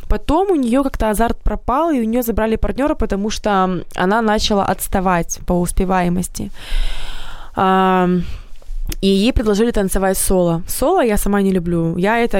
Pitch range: 180-230 Hz